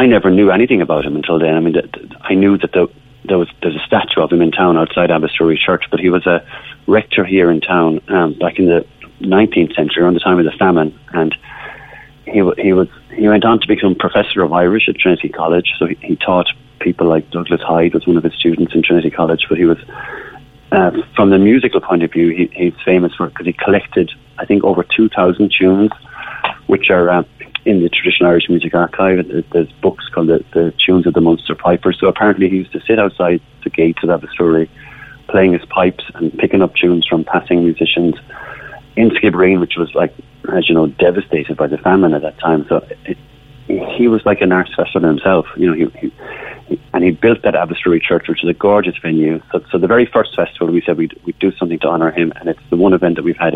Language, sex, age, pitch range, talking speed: English, male, 30-49, 80-95 Hz, 230 wpm